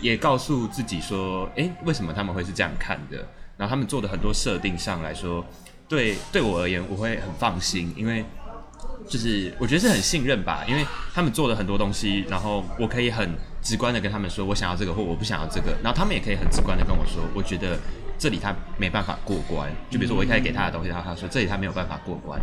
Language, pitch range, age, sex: Chinese, 90-120 Hz, 20-39, male